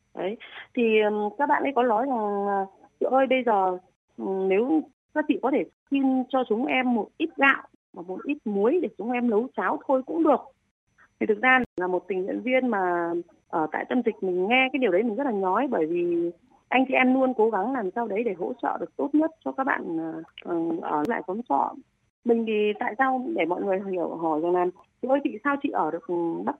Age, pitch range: 20-39, 190-270 Hz